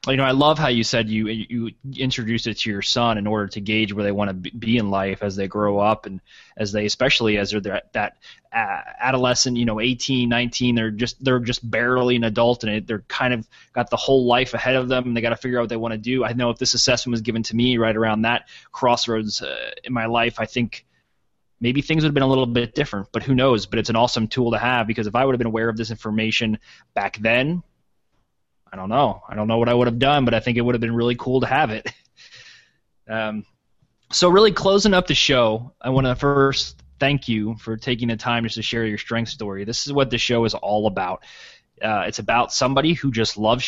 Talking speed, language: 250 wpm, English